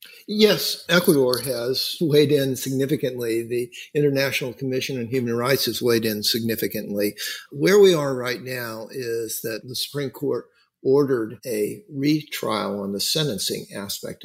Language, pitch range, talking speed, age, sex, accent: English, 105-135 Hz, 140 wpm, 50-69, male, American